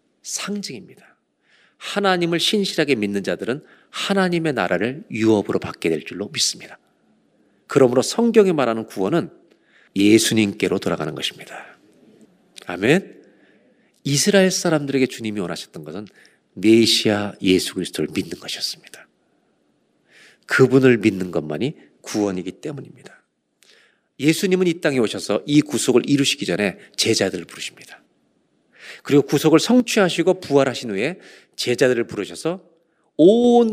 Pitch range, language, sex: 110-165 Hz, Korean, male